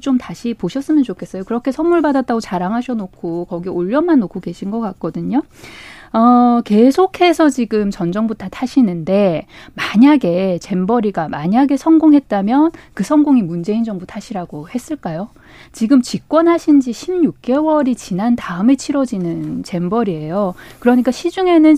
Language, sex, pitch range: Korean, female, 190-280 Hz